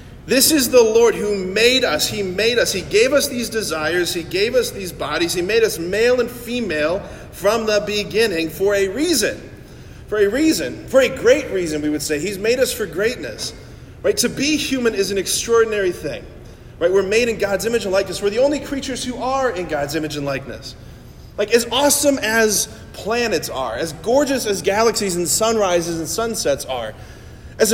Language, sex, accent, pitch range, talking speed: English, male, American, 175-250 Hz, 195 wpm